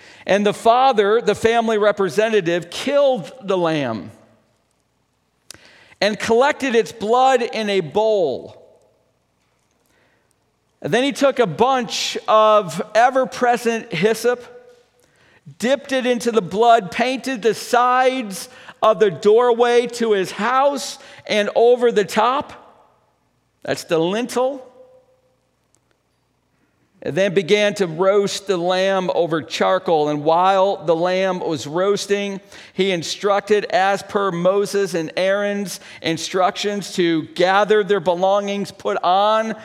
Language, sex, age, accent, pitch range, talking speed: English, male, 50-69, American, 170-225 Hz, 110 wpm